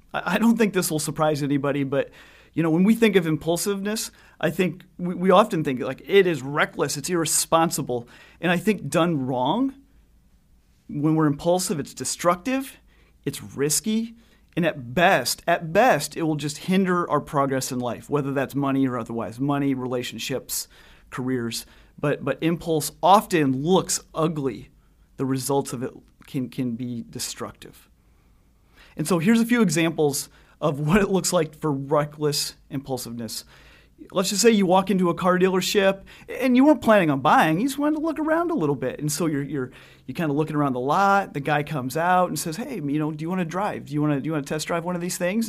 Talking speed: 200 wpm